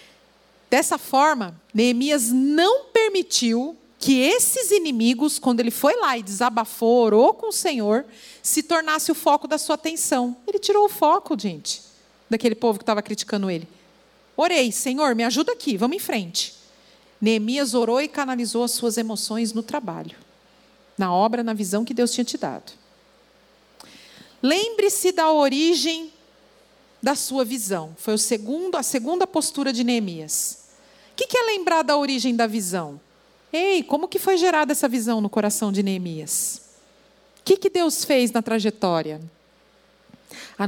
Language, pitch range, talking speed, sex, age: Portuguese, 225-320 Hz, 155 wpm, female, 40-59